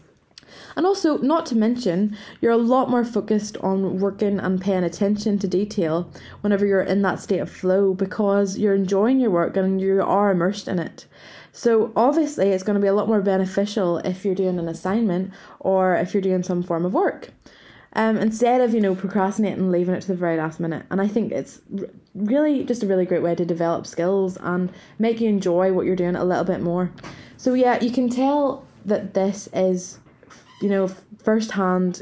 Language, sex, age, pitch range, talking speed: English, female, 20-39, 180-215 Hz, 200 wpm